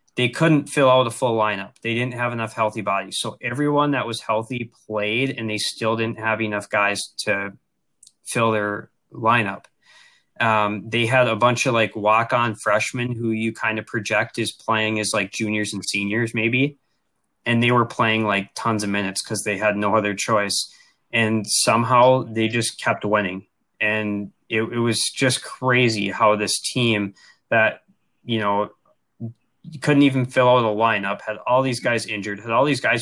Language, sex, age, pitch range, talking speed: English, male, 20-39, 105-120 Hz, 180 wpm